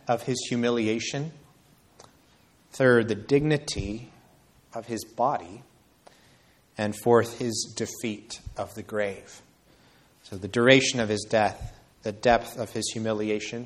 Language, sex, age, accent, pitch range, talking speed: English, male, 30-49, American, 110-140 Hz, 120 wpm